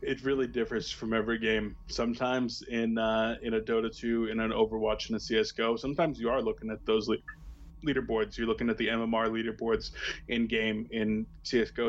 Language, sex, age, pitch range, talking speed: English, male, 20-39, 110-120 Hz, 185 wpm